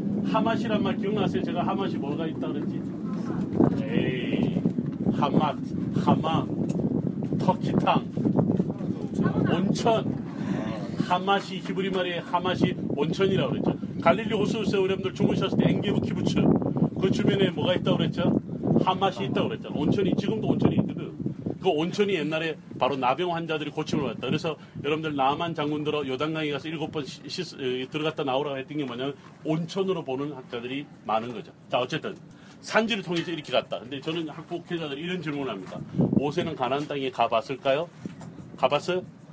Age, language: 40-59, Korean